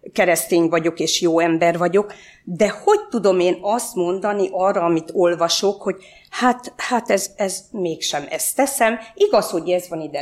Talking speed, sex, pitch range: 165 wpm, female, 155-235 Hz